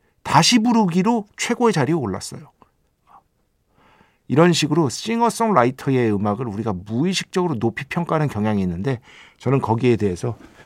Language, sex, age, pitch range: Korean, male, 50-69, 110-170 Hz